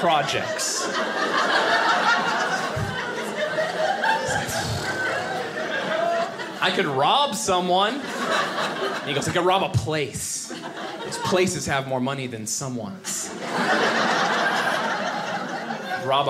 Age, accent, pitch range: 20-39, American, 170-255 Hz